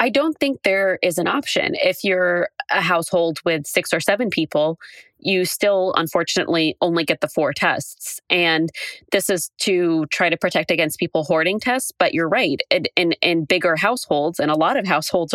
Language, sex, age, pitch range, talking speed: English, female, 20-39, 155-200 Hz, 185 wpm